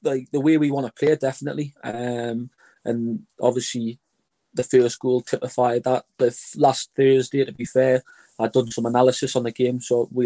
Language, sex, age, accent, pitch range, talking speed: English, male, 20-39, British, 125-140 Hz, 175 wpm